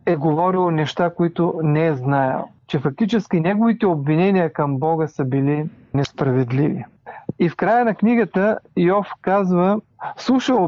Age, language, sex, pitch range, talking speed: 40-59, Bulgarian, male, 140-185 Hz, 135 wpm